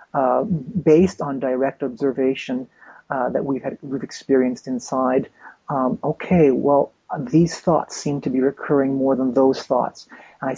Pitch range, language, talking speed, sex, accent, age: 135-150 Hz, English, 145 wpm, male, American, 30-49